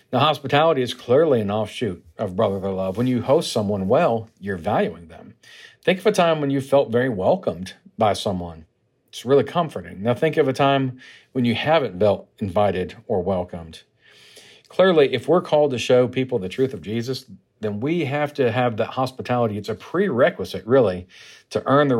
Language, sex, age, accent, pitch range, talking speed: English, male, 50-69, American, 105-130 Hz, 185 wpm